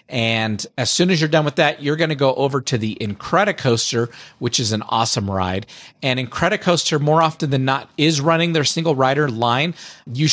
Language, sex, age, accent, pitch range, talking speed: English, male, 40-59, American, 115-145 Hz, 200 wpm